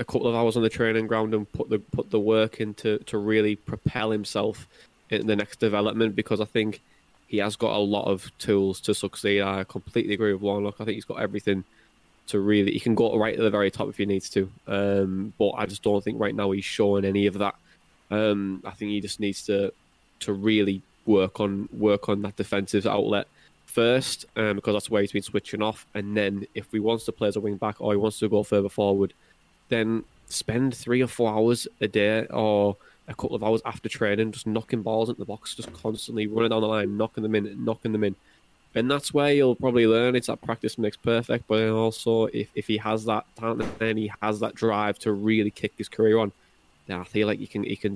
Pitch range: 100-110 Hz